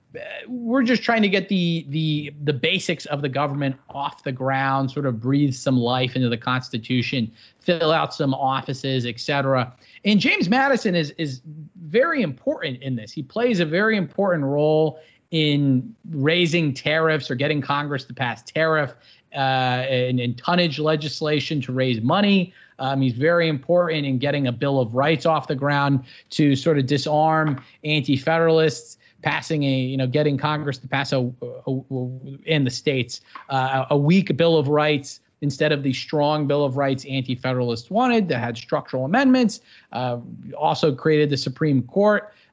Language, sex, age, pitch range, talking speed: English, male, 30-49, 130-165 Hz, 170 wpm